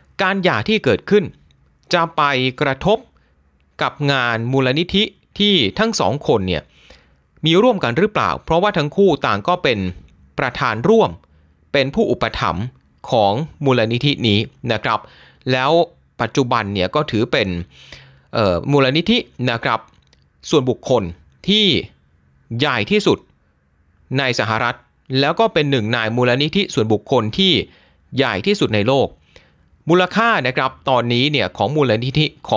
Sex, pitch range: male, 90-150 Hz